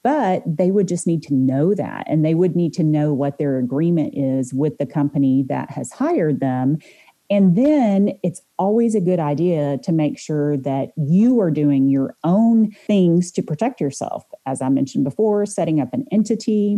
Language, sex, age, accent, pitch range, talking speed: English, female, 40-59, American, 145-185 Hz, 190 wpm